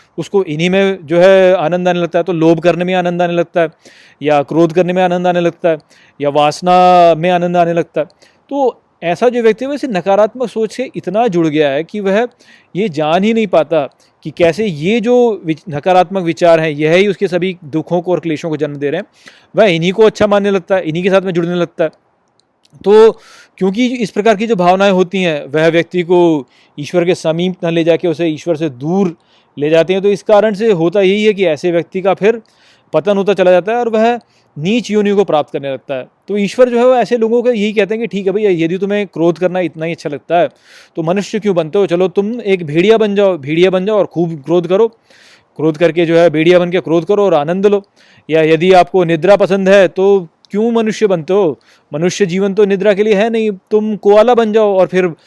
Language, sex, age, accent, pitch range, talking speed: Hindi, male, 30-49, native, 170-205 Hz, 230 wpm